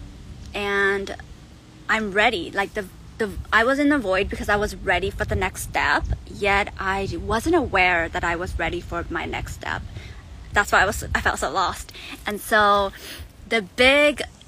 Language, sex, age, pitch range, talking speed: English, female, 20-39, 180-220 Hz, 180 wpm